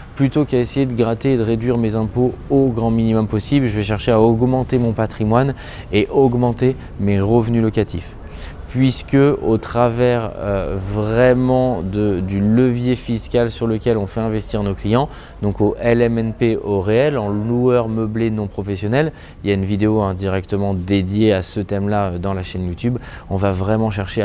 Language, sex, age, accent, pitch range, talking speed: French, male, 20-39, French, 100-125 Hz, 175 wpm